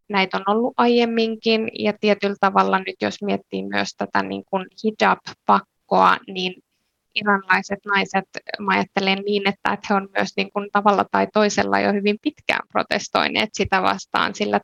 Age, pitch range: 20-39, 190-220 Hz